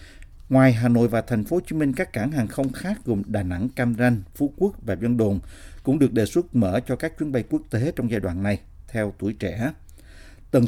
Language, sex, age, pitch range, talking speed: Vietnamese, male, 50-69, 100-130 Hz, 240 wpm